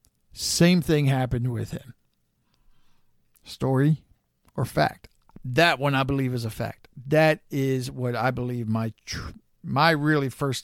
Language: English